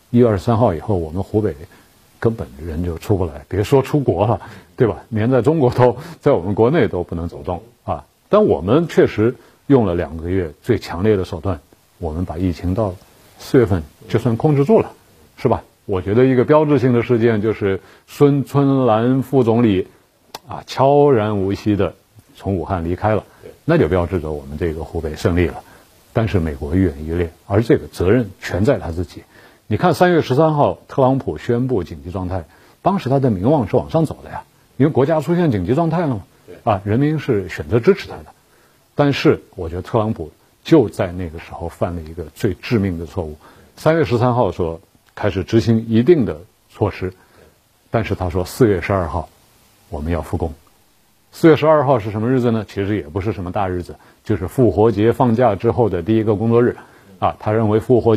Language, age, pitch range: Chinese, 50-69, 90-125 Hz